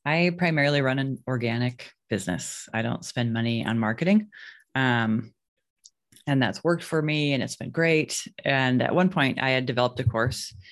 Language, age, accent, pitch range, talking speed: English, 20-39, American, 120-140 Hz, 175 wpm